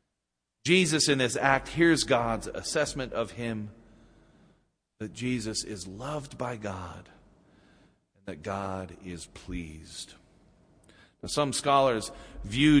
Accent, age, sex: American, 40-59, male